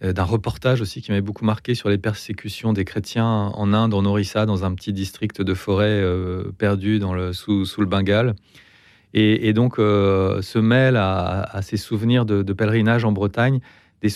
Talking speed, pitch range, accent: 190 wpm, 95-110 Hz, French